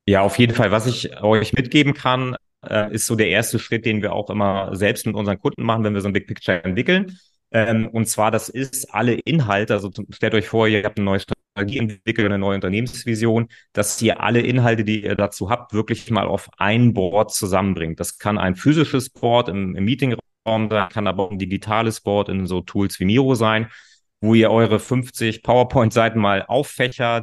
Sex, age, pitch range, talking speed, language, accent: male, 30-49, 100-115 Hz, 200 wpm, German, German